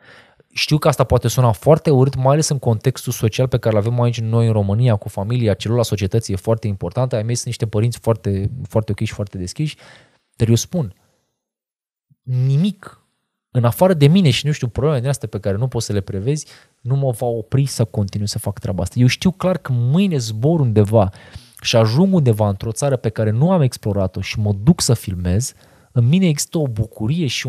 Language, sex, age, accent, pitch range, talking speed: Romanian, male, 20-39, native, 110-145 Hz, 210 wpm